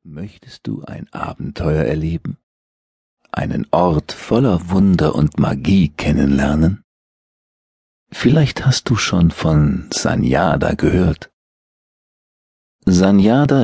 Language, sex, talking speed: German, male, 90 wpm